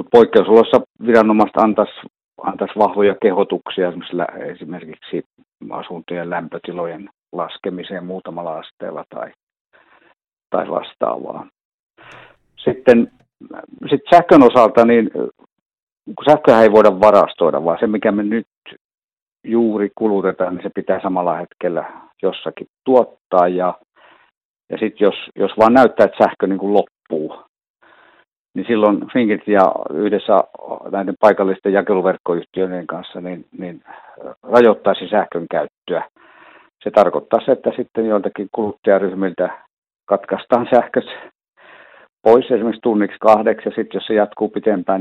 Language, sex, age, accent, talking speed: Finnish, male, 60-79, native, 110 wpm